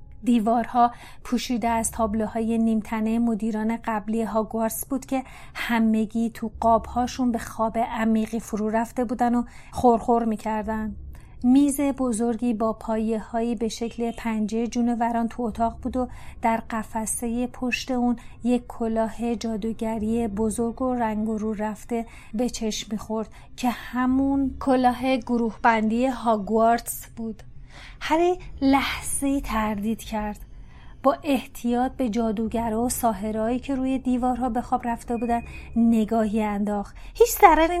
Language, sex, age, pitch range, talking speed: Persian, female, 30-49, 225-255 Hz, 125 wpm